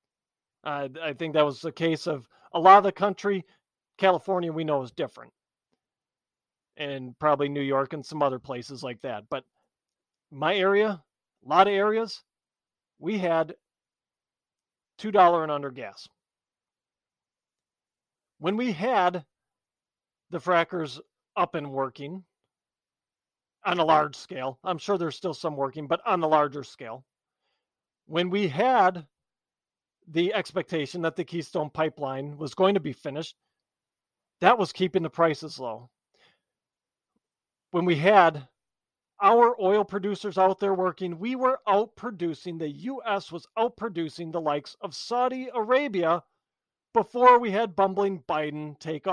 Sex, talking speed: male, 135 wpm